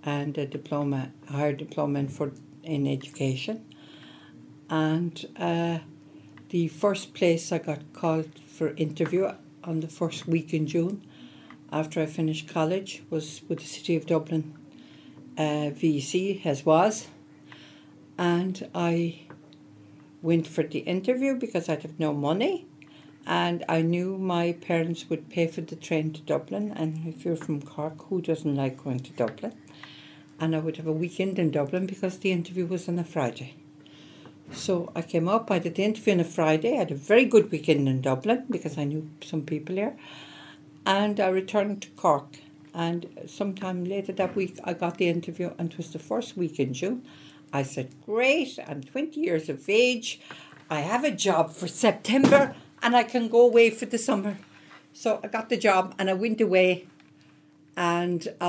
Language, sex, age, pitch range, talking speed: English, female, 60-79, 150-185 Hz, 175 wpm